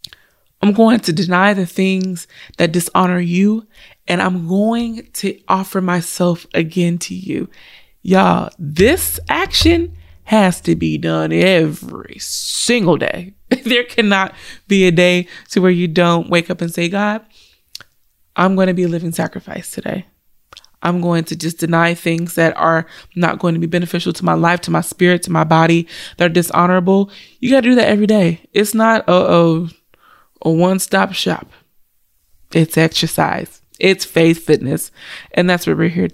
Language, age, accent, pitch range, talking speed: English, 20-39, American, 165-205 Hz, 165 wpm